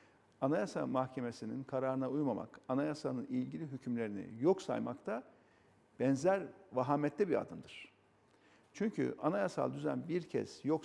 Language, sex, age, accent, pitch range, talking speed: Turkish, male, 50-69, native, 125-180 Hz, 110 wpm